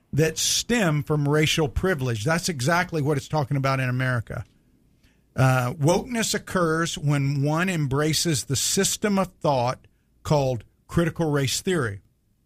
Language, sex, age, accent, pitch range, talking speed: English, male, 50-69, American, 130-165 Hz, 130 wpm